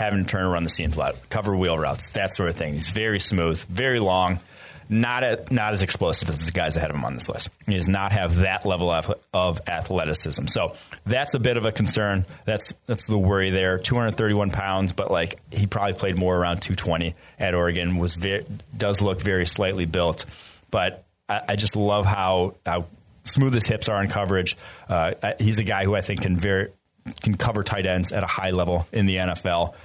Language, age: English, 30-49